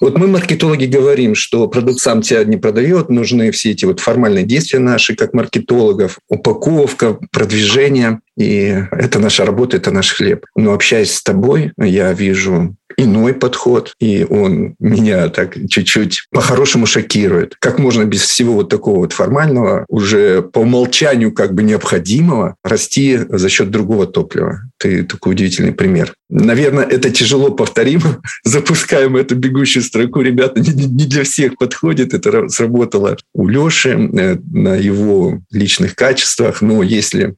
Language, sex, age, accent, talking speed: Russian, male, 50-69, native, 145 wpm